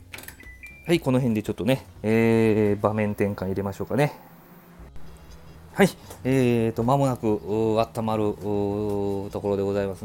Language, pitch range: Japanese, 95-125 Hz